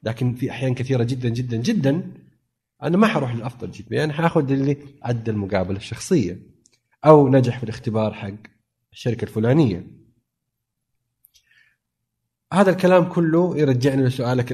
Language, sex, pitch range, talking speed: Arabic, male, 110-135 Hz, 125 wpm